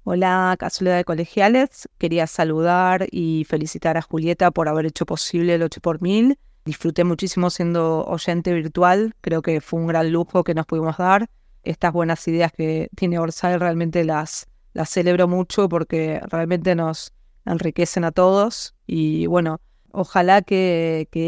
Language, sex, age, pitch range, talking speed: Spanish, female, 20-39, 165-180 Hz, 155 wpm